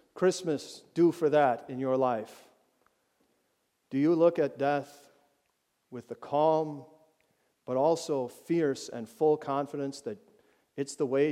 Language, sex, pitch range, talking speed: English, male, 130-155 Hz, 135 wpm